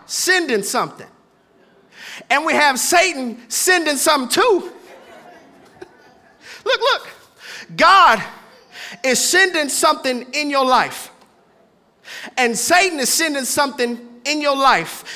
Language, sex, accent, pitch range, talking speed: English, male, American, 235-330 Hz, 105 wpm